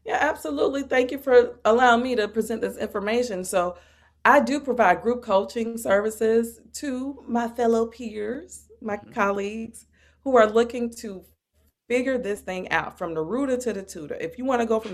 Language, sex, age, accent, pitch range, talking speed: English, female, 30-49, American, 190-240 Hz, 175 wpm